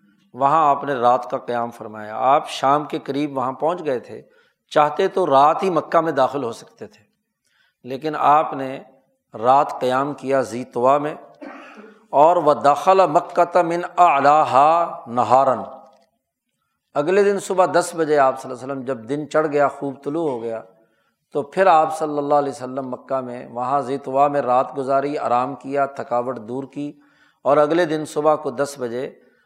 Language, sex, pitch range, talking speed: Urdu, male, 125-155 Hz, 175 wpm